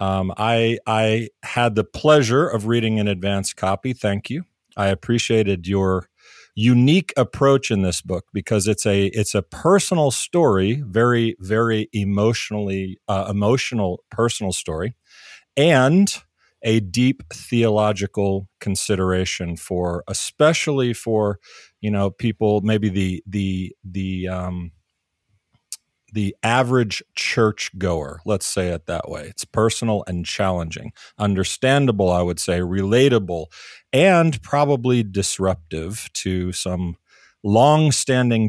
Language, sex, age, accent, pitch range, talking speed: English, male, 40-59, American, 95-115 Hz, 115 wpm